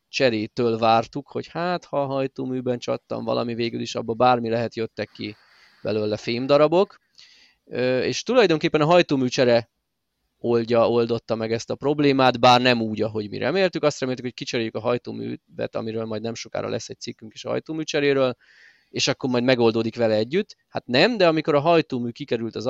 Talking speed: 170 wpm